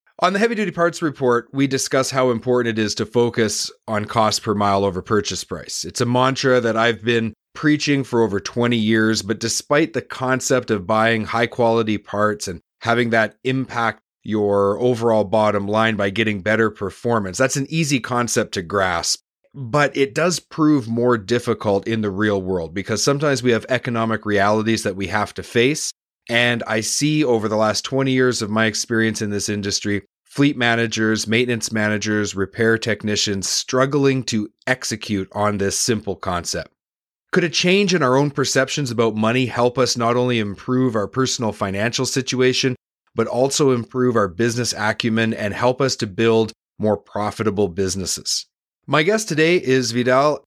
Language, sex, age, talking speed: English, male, 30-49, 170 wpm